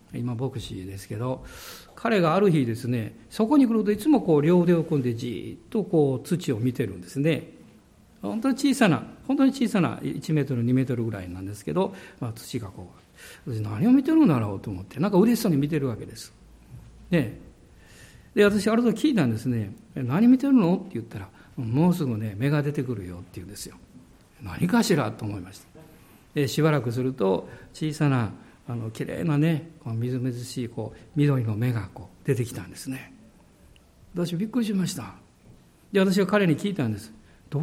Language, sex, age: Japanese, male, 50-69